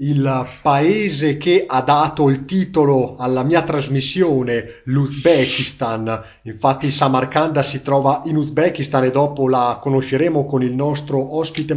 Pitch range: 135-165 Hz